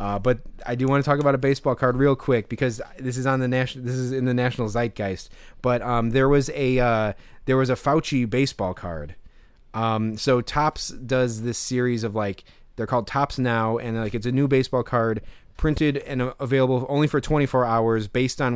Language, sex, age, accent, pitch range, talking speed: English, male, 30-49, American, 105-135 Hz, 210 wpm